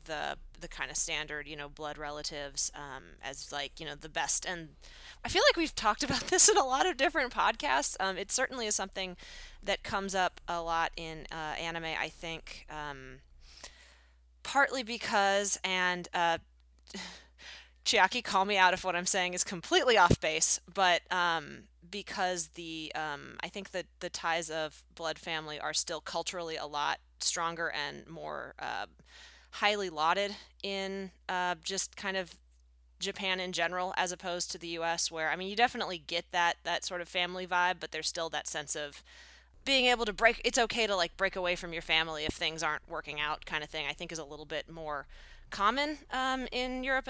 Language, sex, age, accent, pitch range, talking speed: English, female, 20-39, American, 155-190 Hz, 190 wpm